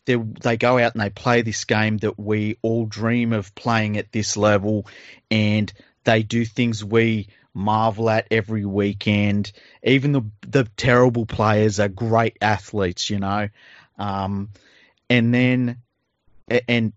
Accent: Australian